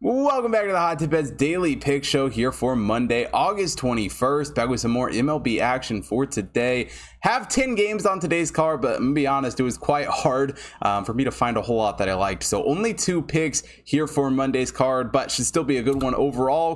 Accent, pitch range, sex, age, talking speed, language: American, 115-160 Hz, male, 20-39, 235 wpm, English